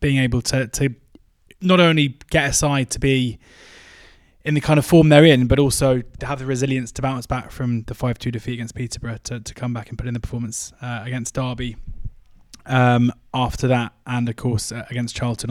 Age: 20-39